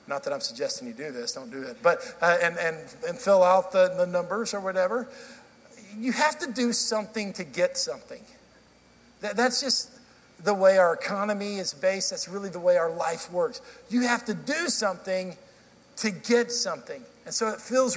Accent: American